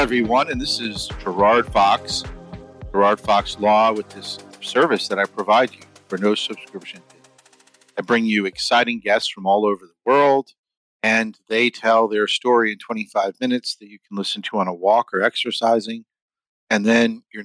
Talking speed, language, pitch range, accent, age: 170 wpm, English, 100-120 Hz, American, 50-69